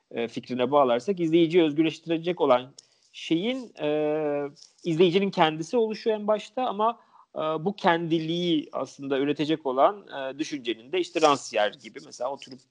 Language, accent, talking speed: Turkish, native, 130 wpm